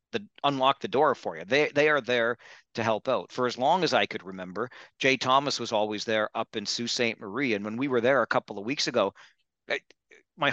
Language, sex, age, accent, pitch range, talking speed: English, male, 40-59, American, 115-145 Hz, 230 wpm